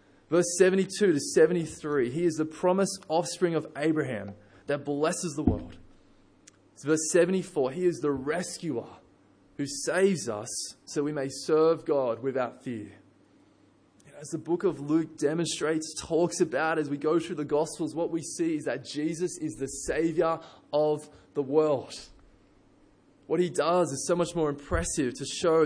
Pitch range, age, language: 140-180 Hz, 20-39, English